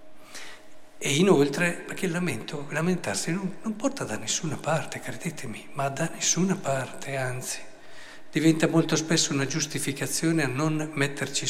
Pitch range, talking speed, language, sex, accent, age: 135-180 Hz, 135 wpm, Italian, male, native, 50-69